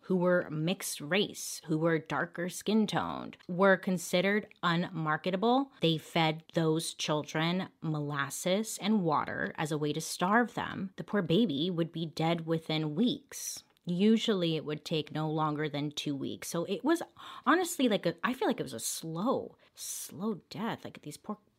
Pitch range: 155-205 Hz